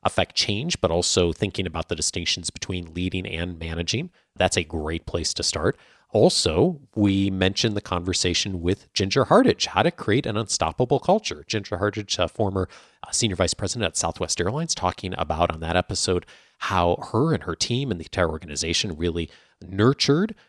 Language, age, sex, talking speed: English, 30-49, male, 170 wpm